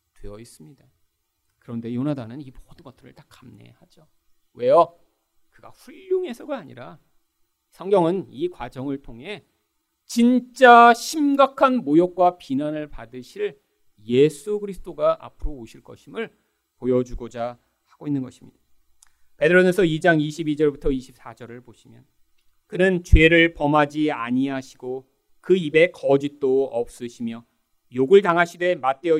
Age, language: 40-59, Korean